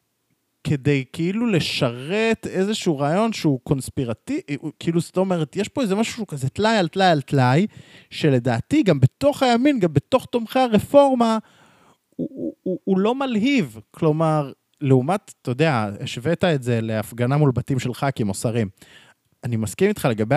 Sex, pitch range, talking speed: male, 140-205 Hz, 155 wpm